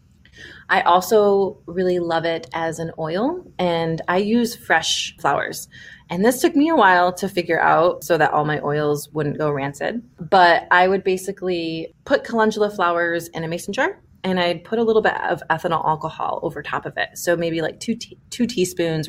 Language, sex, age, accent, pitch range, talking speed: English, female, 20-39, American, 150-180 Hz, 190 wpm